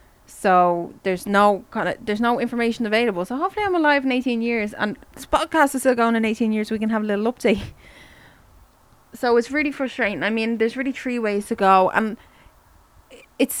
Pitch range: 190-255 Hz